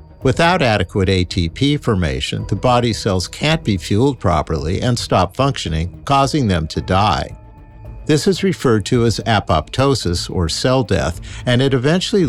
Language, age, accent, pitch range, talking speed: English, 50-69, American, 90-135 Hz, 145 wpm